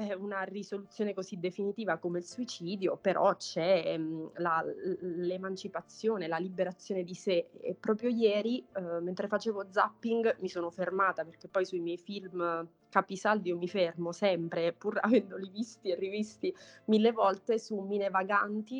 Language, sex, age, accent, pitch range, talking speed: Italian, female, 20-39, native, 180-210 Hz, 145 wpm